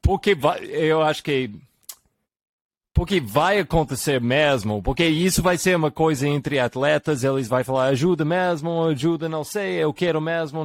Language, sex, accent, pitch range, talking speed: Portuguese, male, Brazilian, 125-160 Hz, 160 wpm